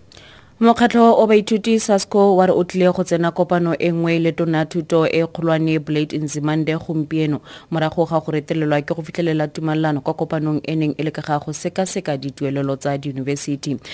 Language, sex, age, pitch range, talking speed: English, female, 30-49, 145-160 Hz, 145 wpm